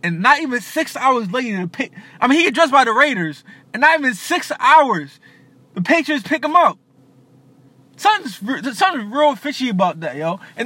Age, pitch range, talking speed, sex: 20-39, 200-290 Hz, 185 wpm, male